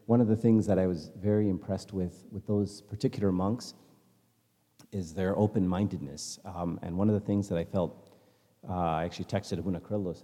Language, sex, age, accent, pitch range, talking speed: English, male, 40-59, American, 85-105 Hz, 180 wpm